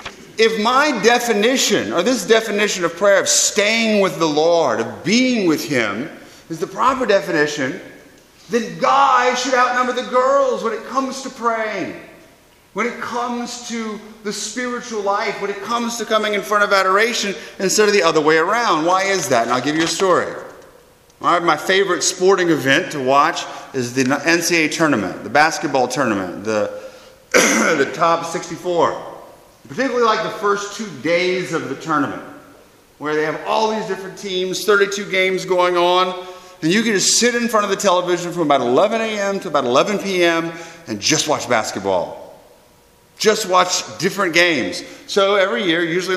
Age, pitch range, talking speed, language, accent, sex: 30-49, 165-225 Hz, 170 wpm, English, American, male